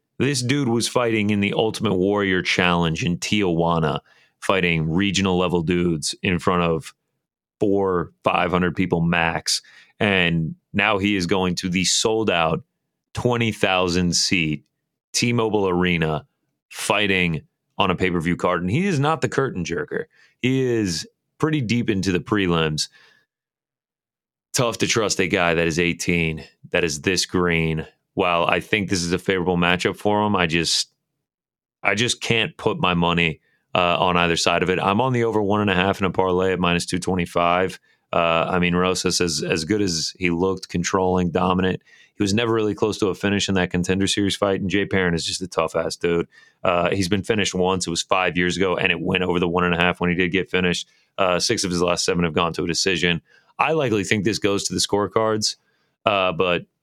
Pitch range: 85-100 Hz